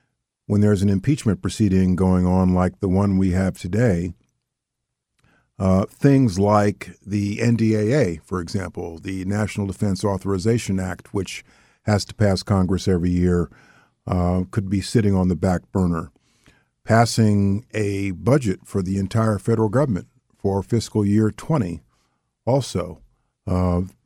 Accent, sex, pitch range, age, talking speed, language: American, male, 95-115 Hz, 50-69, 135 wpm, English